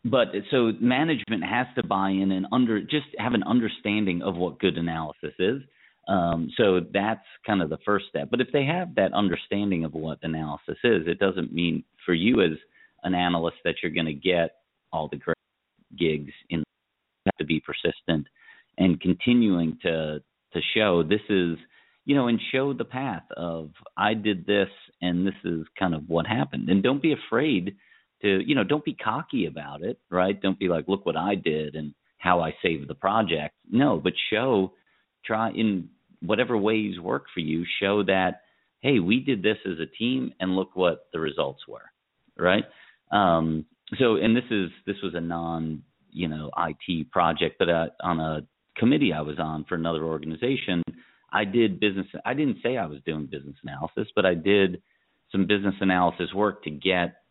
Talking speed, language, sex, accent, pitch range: 185 wpm, English, male, American, 80-105 Hz